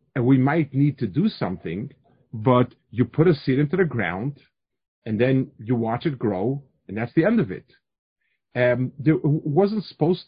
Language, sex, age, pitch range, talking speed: English, male, 50-69, 120-165 Hz, 180 wpm